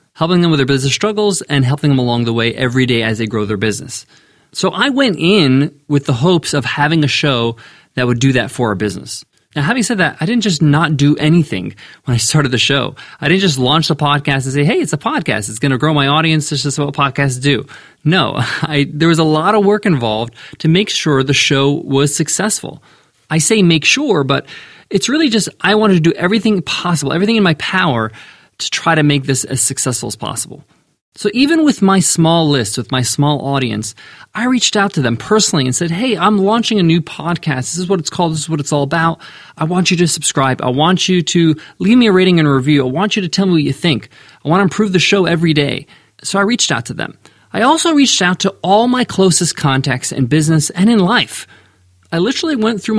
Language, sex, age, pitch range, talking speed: English, male, 20-39, 135-185 Hz, 235 wpm